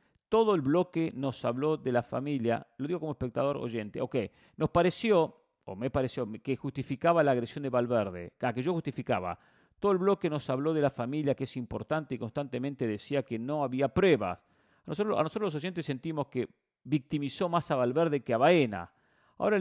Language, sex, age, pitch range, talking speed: English, male, 40-59, 120-155 Hz, 195 wpm